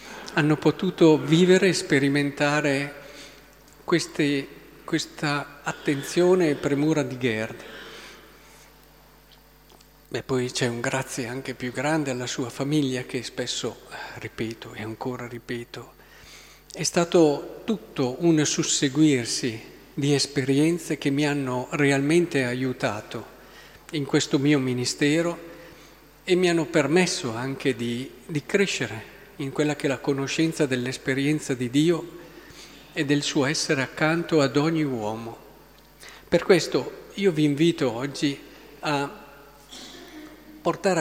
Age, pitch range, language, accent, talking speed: 50-69, 135-160 Hz, Italian, native, 115 wpm